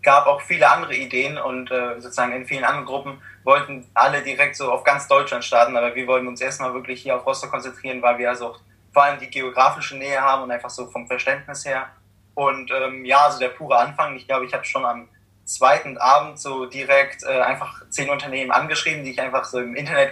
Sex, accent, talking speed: male, German, 220 wpm